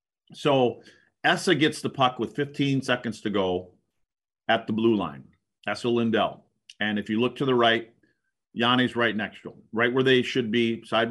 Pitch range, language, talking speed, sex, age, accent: 110-130 Hz, English, 185 wpm, male, 40-59, American